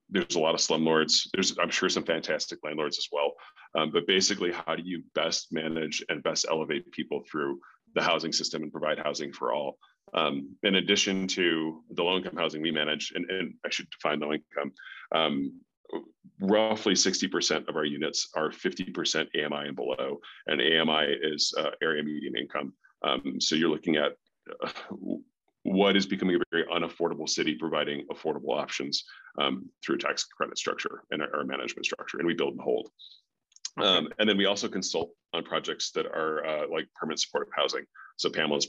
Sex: male